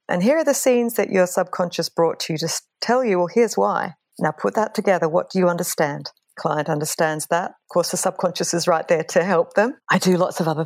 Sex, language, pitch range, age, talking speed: female, English, 170-205 Hz, 40-59, 240 wpm